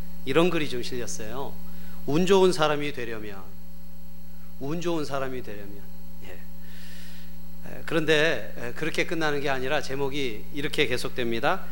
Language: Korean